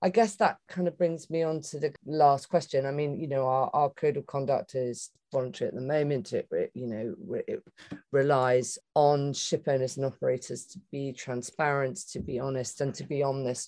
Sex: female